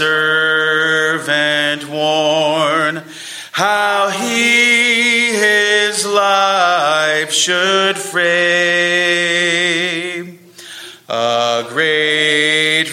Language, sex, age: English, male, 40-59